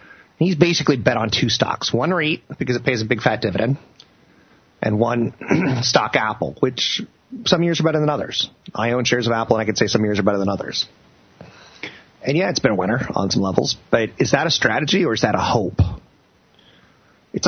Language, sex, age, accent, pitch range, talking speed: English, male, 30-49, American, 105-140 Hz, 210 wpm